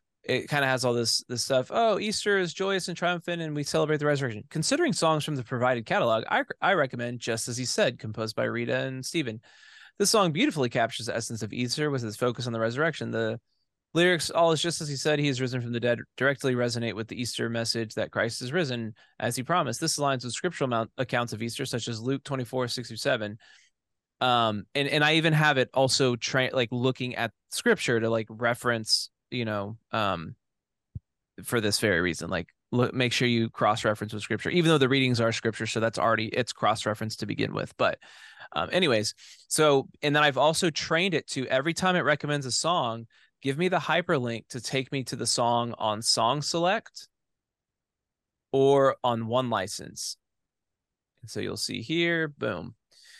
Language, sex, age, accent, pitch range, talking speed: English, male, 20-39, American, 115-150 Hz, 200 wpm